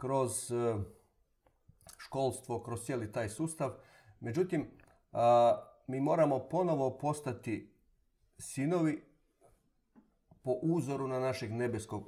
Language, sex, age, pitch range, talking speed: Croatian, male, 40-59, 105-130 Hz, 90 wpm